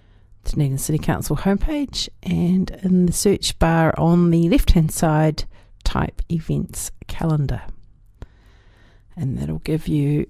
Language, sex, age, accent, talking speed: English, female, 40-59, Australian, 120 wpm